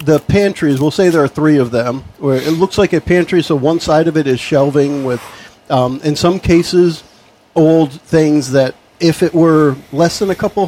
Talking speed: 210 wpm